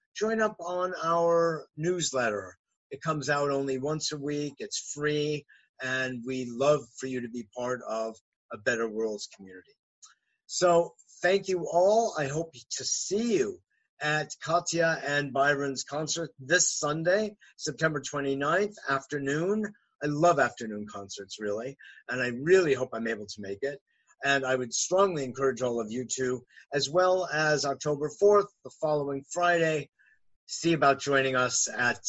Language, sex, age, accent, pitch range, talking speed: English, male, 50-69, American, 125-155 Hz, 155 wpm